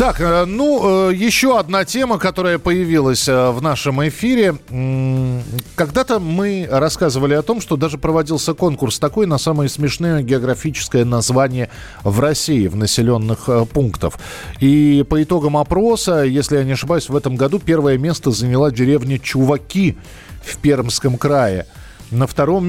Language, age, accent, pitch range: Russian, 40-59, native, 125-165 Hz